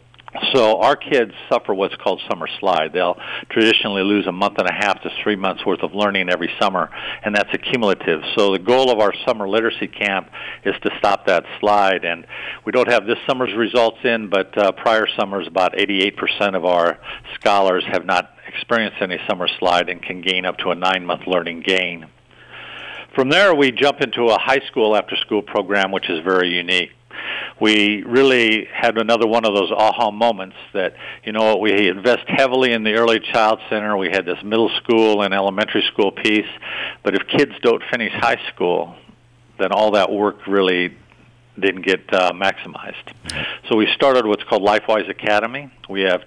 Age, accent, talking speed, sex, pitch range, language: 50-69, American, 185 wpm, male, 95-115 Hz, English